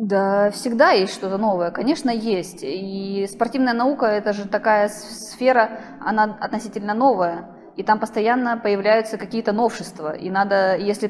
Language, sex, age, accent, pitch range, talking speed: Russian, female, 20-39, native, 195-230 Hz, 140 wpm